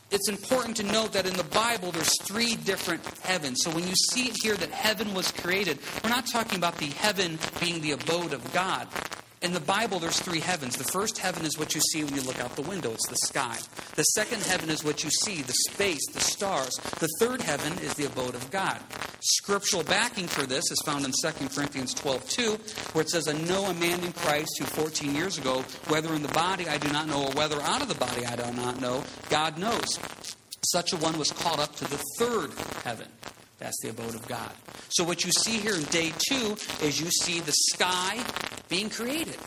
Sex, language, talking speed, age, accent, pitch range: male, English, 225 wpm, 40-59, American, 145-195 Hz